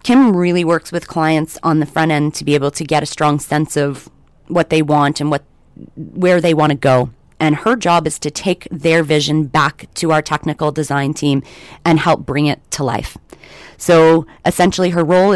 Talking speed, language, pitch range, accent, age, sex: 205 wpm, English, 145-165 Hz, American, 30-49, female